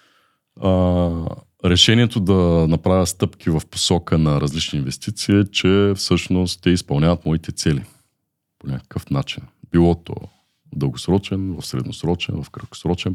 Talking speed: 125 wpm